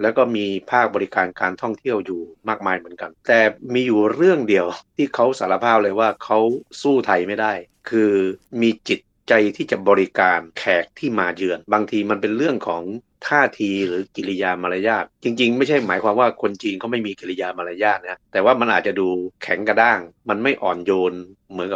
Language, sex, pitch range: Thai, male, 95-115 Hz